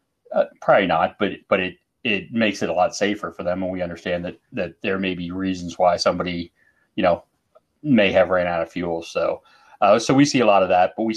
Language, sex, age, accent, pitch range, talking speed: English, male, 30-49, American, 85-100 Hz, 235 wpm